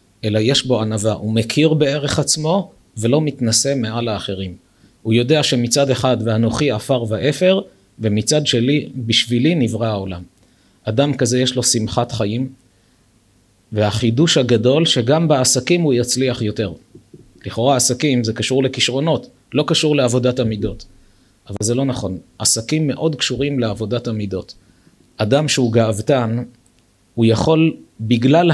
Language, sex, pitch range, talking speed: Hebrew, male, 110-140 Hz, 125 wpm